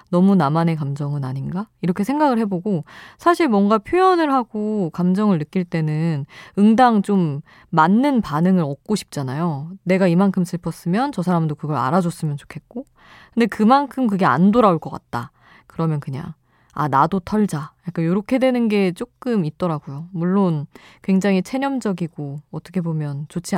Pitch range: 150-200 Hz